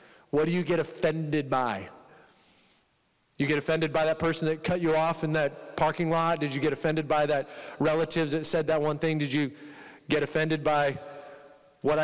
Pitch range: 150-200 Hz